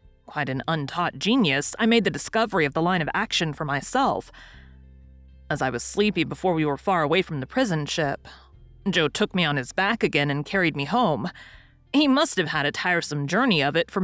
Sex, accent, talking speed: female, American, 210 wpm